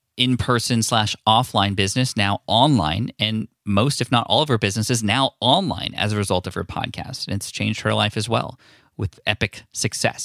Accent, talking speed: American, 195 wpm